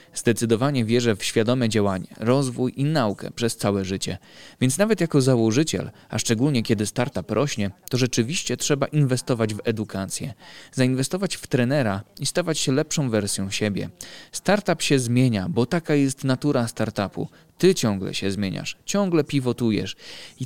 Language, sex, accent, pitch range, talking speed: Polish, male, native, 110-140 Hz, 145 wpm